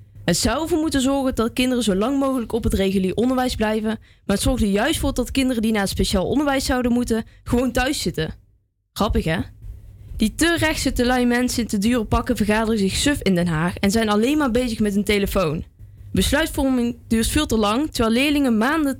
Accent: Dutch